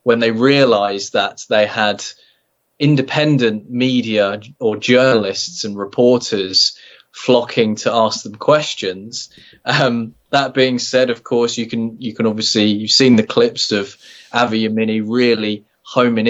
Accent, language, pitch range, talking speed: British, English, 110-150 Hz, 140 wpm